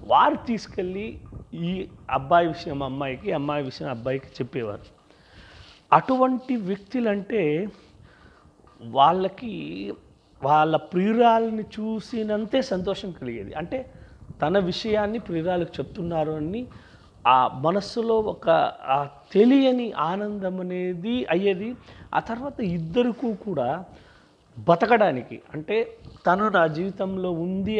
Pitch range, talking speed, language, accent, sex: 150-215 Hz, 85 wpm, Telugu, native, male